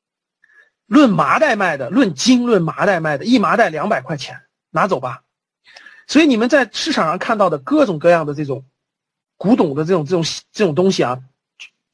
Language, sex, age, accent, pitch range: Chinese, male, 40-59, native, 155-245 Hz